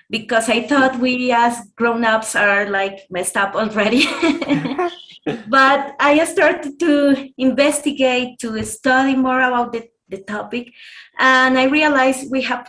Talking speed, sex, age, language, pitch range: 130 wpm, female, 20-39, English, 225-265 Hz